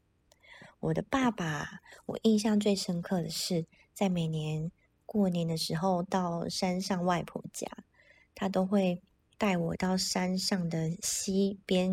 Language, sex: Chinese, female